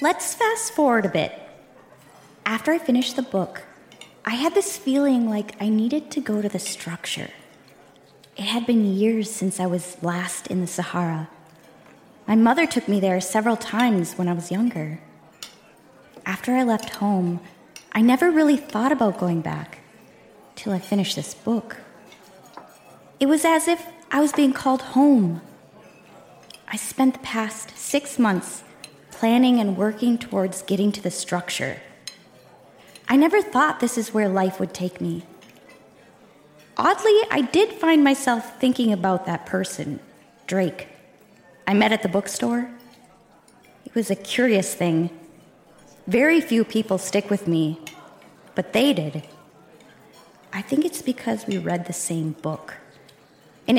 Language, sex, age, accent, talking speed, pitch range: English, female, 20-39, American, 145 wpm, 185-255 Hz